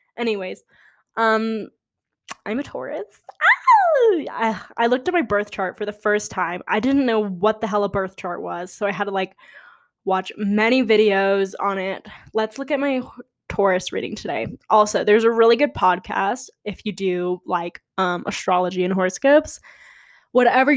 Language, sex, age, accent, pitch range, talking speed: English, female, 10-29, American, 190-235 Hz, 170 wpm